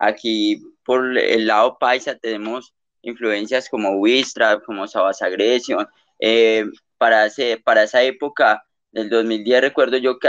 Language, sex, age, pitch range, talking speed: Spanish, male, 20-39, 115-140 Hz, 120 wpm